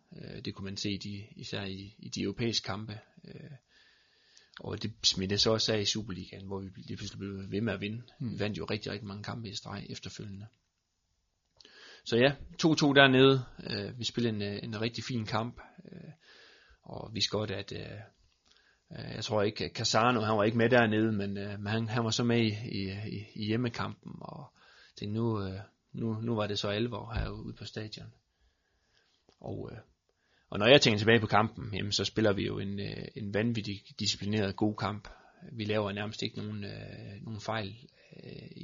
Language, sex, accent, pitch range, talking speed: Danish, male, native, 100-120 Hz, 160 wpm